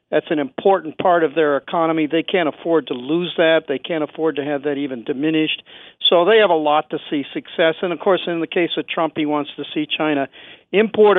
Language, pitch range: English, 145-170 Hz